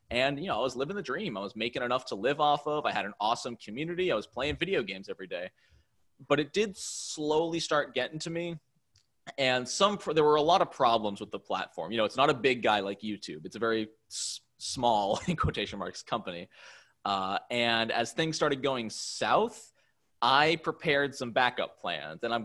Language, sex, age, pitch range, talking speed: English, male, 20-39, 115-155 Hz, 210 wpm